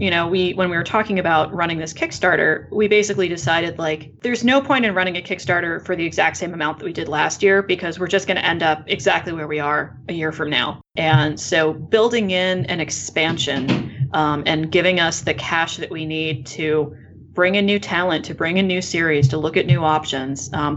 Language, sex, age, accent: English, female, 30-49, American